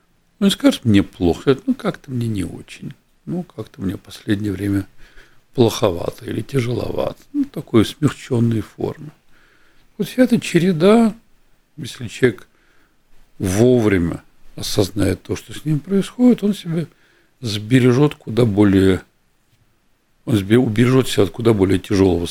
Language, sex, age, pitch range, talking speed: Russian, male, 60-79, 100-140 Hz, 125 wpm